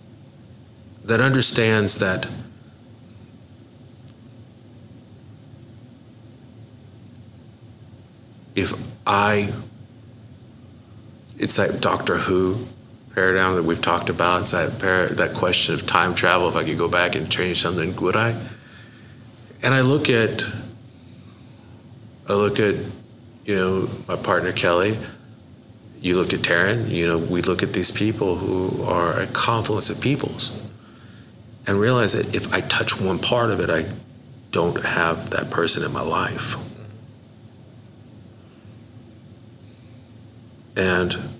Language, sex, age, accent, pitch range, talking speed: English, male, 50-69, American, 105-120 Hz, 115 wpm